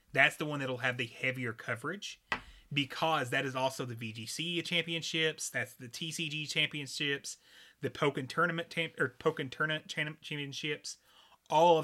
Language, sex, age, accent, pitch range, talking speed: English, male, 30-49, American, 125-160 Hz, 140 wpm